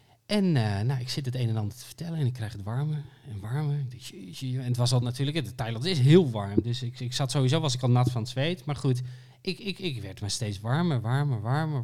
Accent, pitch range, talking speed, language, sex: Dutch, 125-170 Hz, 255 wpm, Dutch, male